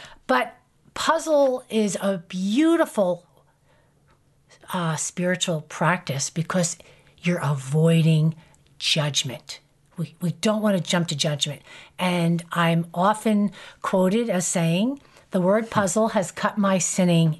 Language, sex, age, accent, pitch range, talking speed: English, female, 50-69, American, 170-235 Hz, 115 wpm